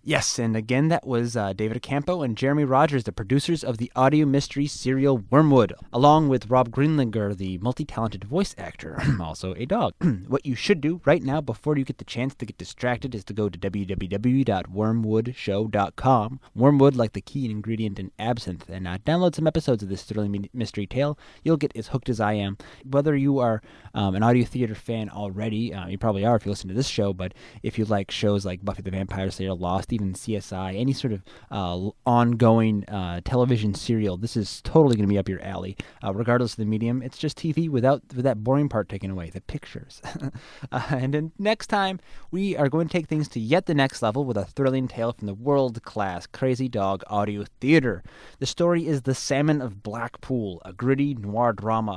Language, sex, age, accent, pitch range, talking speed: English, male, 20-39, American, 100-135 Hz, 205 wpm